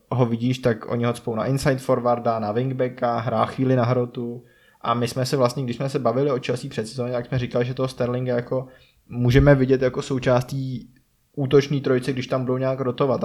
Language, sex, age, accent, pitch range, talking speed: Czech, male, 20-39, native, 120-130 Hz, 205 wpm